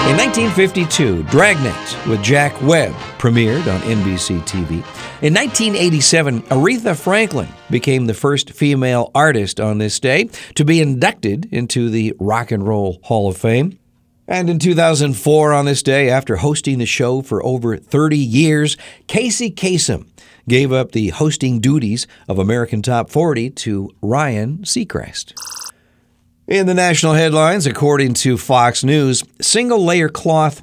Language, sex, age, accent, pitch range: Japanese, male, 50-69, American, 115-155 Hz